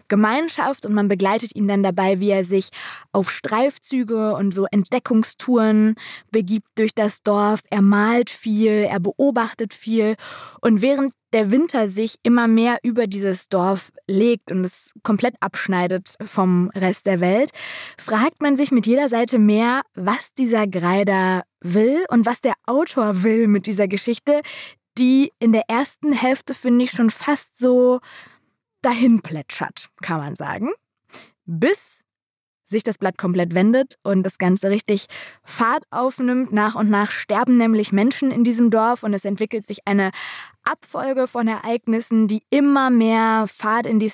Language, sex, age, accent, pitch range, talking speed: German, female, 20-39, German, 205-245 Hz, 155 wpm